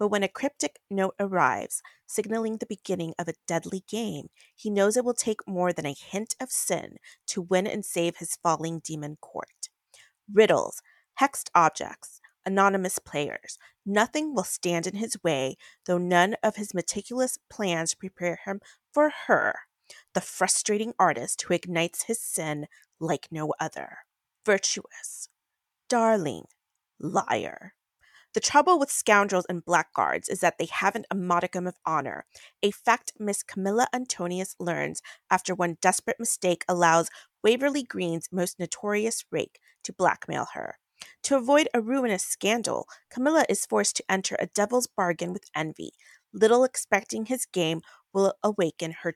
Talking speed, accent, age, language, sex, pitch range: 150 wpm, American, 30-49, English, female, 175-230 Hz